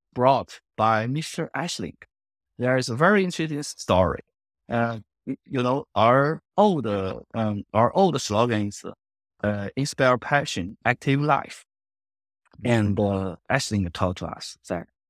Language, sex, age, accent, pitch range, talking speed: English, male, 30-49, Chinese, 105-140 Hz, 125 wpm